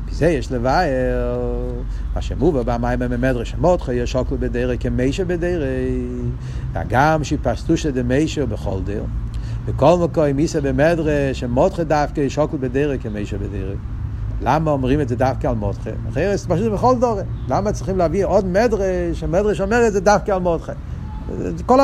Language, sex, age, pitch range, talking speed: Hebrew, male, 60-79, 125-190 Hz, 150 wpm